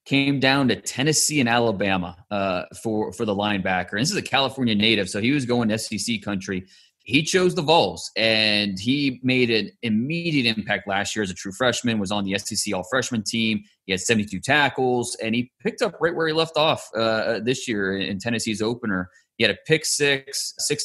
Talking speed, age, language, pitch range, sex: 200 wpm, 30-49, English, 105-130 Hz, male